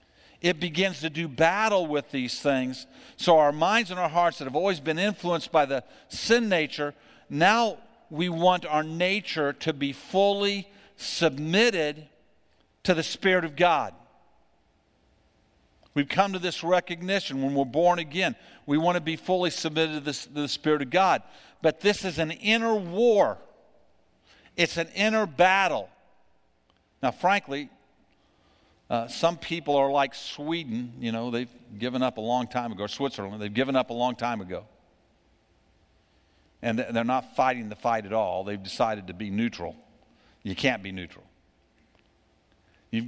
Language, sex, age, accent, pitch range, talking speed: English, male, 50-69, American, 125-175 Hz, 155 wpm